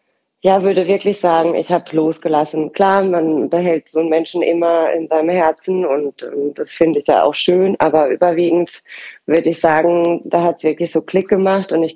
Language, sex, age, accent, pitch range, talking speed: German, female, 20-39, German, 160-185 Hz, 195 wpm